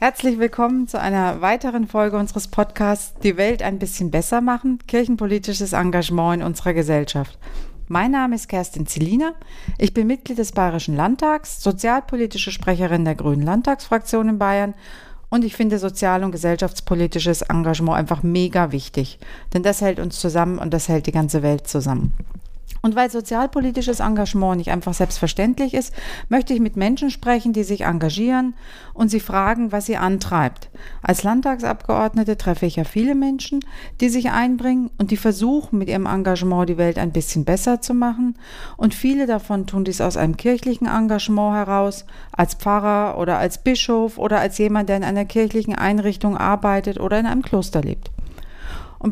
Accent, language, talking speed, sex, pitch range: German, German, 165 wpm, female, 180-230 Hz